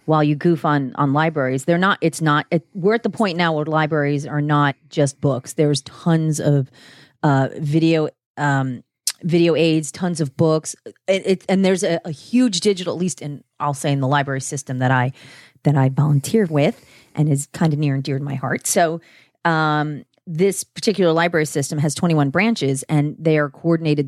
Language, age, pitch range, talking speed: English, 30-49, 140-180 Hz, 195 wpm